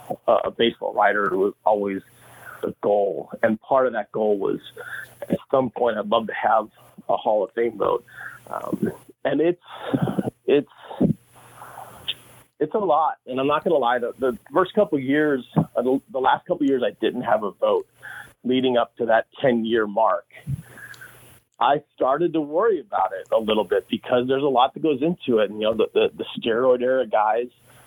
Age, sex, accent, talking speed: 40-59, male, American, 185 wpm